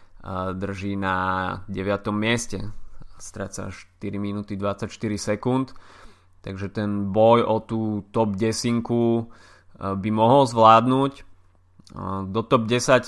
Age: 20-39